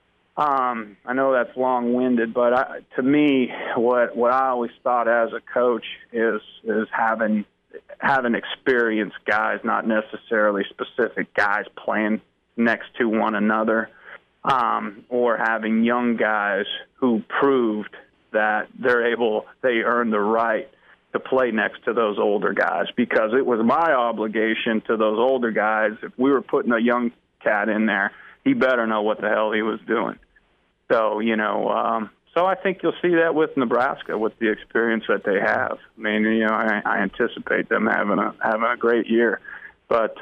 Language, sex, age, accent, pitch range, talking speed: English, male, 30-49, American, 110-120 Hz, 170 wpm